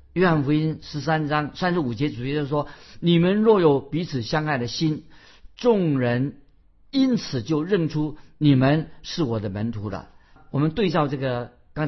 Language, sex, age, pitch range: Chinese, male, 50-69, 120-155 Hz